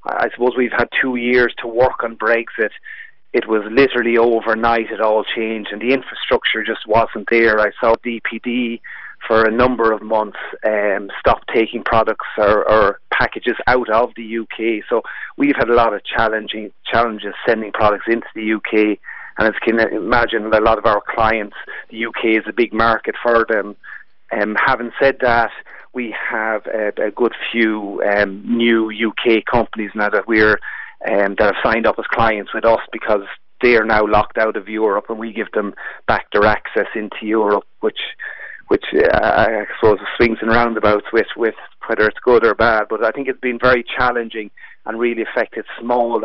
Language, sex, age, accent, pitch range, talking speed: English, male, 30-49, Irish, 110-120 Hz, 185 wpm